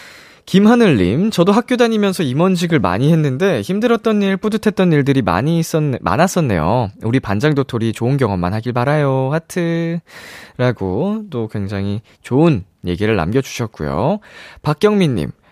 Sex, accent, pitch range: male, native, 110-180 Hz